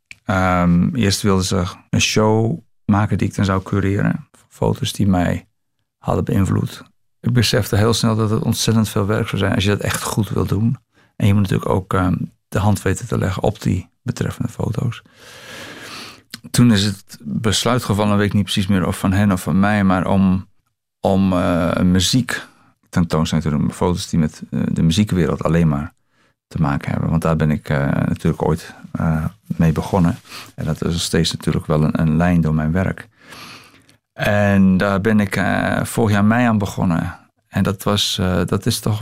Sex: male